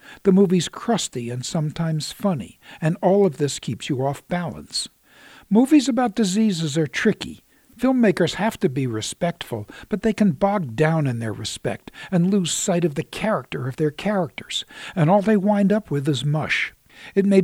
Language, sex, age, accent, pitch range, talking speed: English, male, 60-79, American, 145-190 Hz, 175 wpm